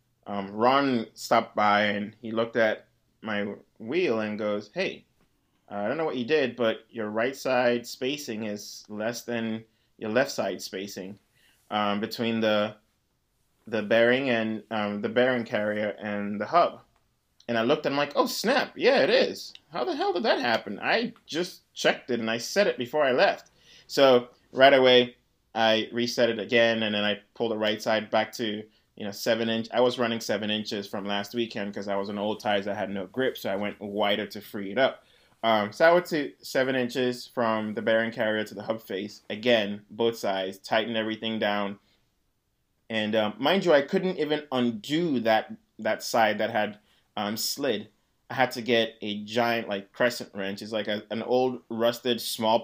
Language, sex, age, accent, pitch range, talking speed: English, male, 20-39, American, 105-125 Hz, 195 wpm